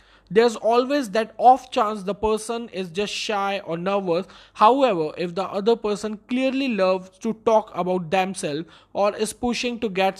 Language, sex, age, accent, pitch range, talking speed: Hindi, male, 20-39, native, 185-225 Hz, 165 wpm